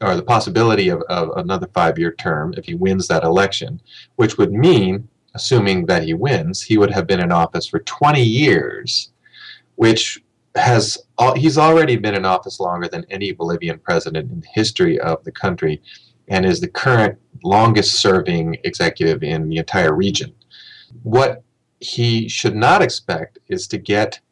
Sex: male